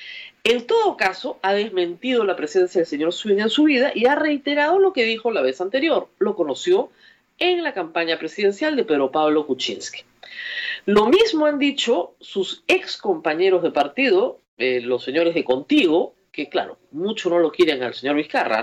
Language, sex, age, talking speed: Spanish, female, 40-59, 175 wpm